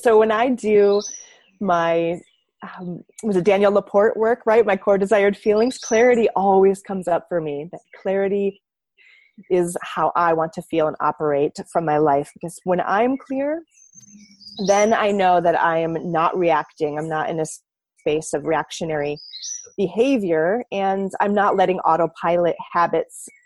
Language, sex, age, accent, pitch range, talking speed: English, female, 30-49, American, 170-215 Hz, 155 wpm